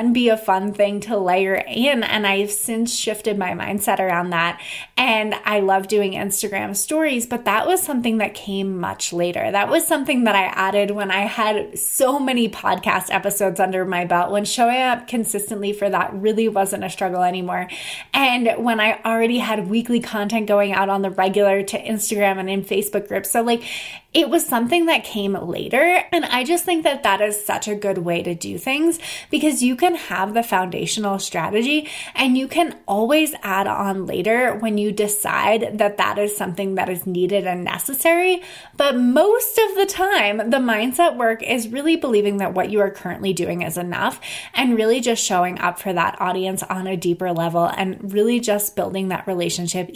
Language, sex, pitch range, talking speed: English, female, 195-245 Hz, 190 wpm